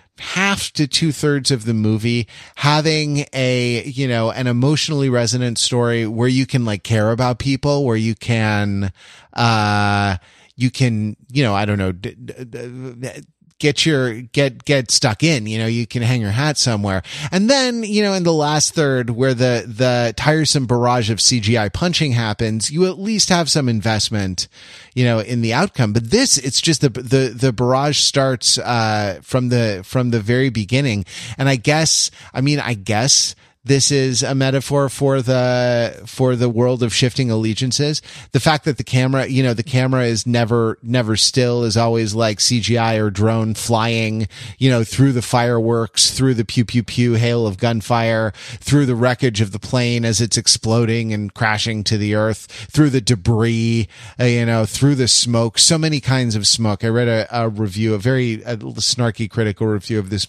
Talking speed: 185 wpm